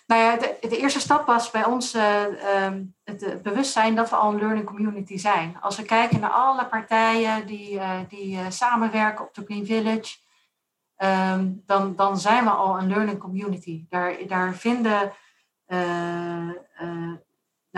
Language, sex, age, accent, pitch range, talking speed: Dutch, female, 40-59, Dutch, 185-220 Hz, 165 wpm